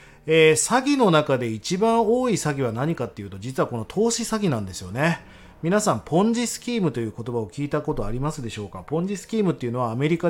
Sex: male